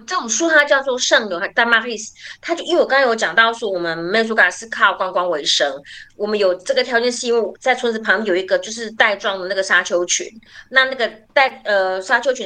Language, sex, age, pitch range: Chinese, female, 30-49, 195-265 Hz